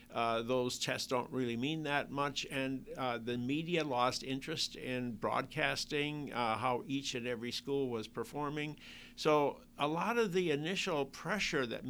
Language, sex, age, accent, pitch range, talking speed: English, male, 60-79, American, 120-155 Hz, 160 wpm